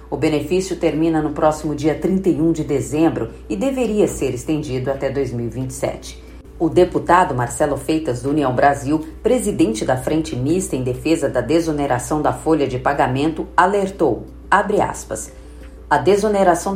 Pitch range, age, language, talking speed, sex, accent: 135-180 Hz, 50-69, Portuguese, 140 wpm, female, Brazilian